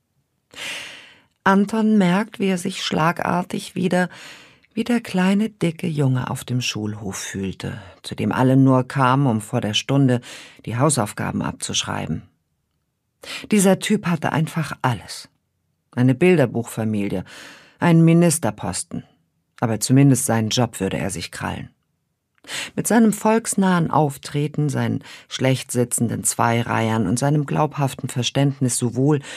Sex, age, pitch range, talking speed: female, 50-69, 120-165 Hz, 120 wpm